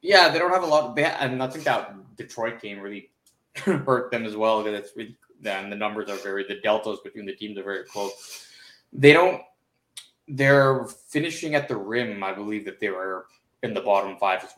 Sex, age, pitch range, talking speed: male, 20-39, 100-135 Hz, 215 wpm